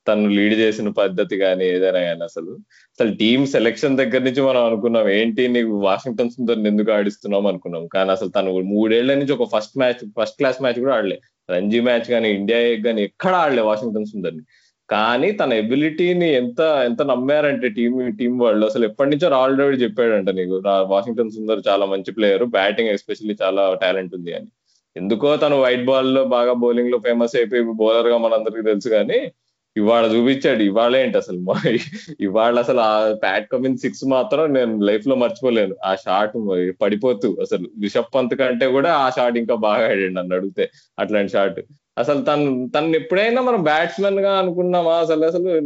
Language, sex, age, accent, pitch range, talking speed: Telugu, male, 20-39, native, 105-135 Hz, 170 wpm